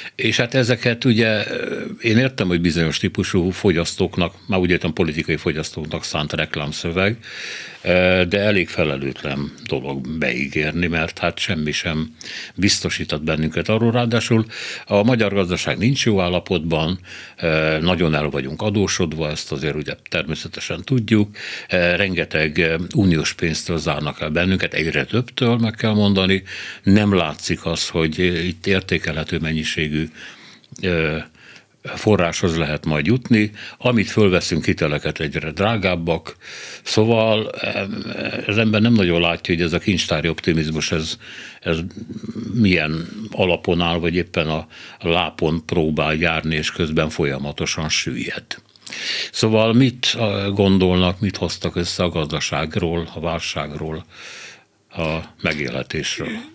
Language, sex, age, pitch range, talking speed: Hungarian, male, 60-79, 80-105 Hz, 115 wpm